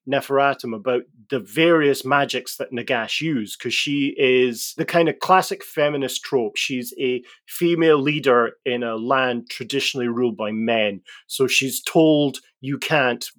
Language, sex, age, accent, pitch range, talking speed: English, male, 30-49, British, 115-145 Hz, 150 wpm